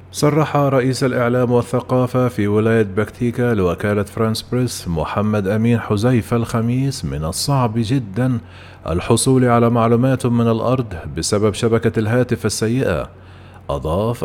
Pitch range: 100-125 Hz